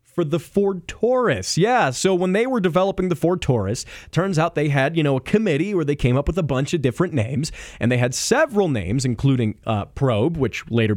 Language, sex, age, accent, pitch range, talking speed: English, male, 30-49, American, 115-175 Hz, 225 wpm